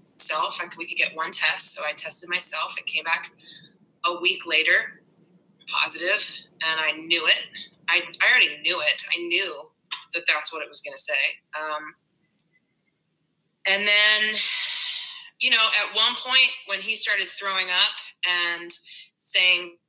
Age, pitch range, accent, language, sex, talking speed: 20-39, 170-200 Hz, American, English, female, 160 wpm